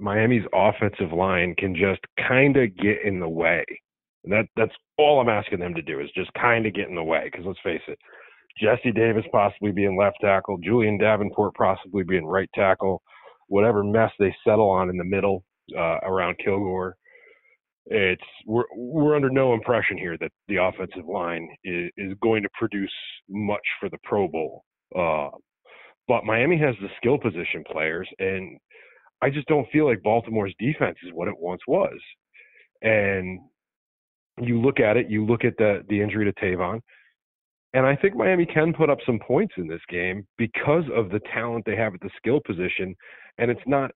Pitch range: 95-120 Hz